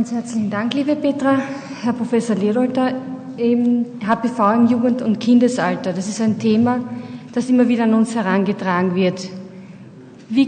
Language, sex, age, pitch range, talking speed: German, female, 30-49, 215-255 Hz, 145 wpm